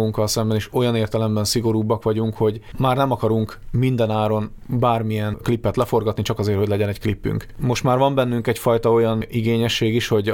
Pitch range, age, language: 105-115 Hz, 30-49, Hungarian